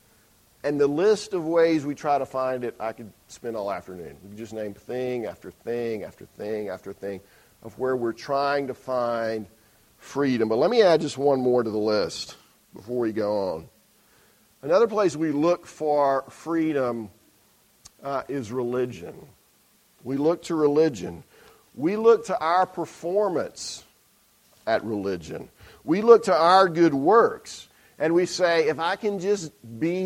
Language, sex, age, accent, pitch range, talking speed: English, male, 40-59, American, 120-170 Hz, 160 wpm